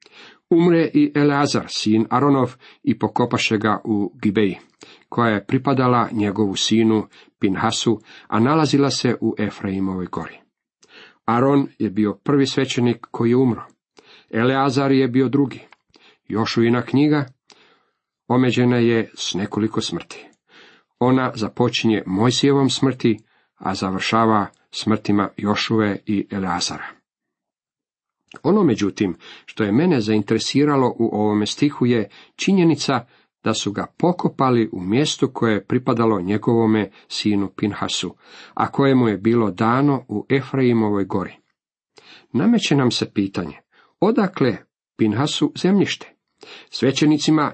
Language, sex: Croatian, male